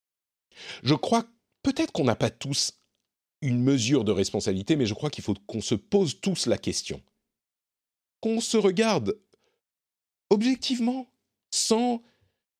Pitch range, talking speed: 125-190 Hz, 130 wpm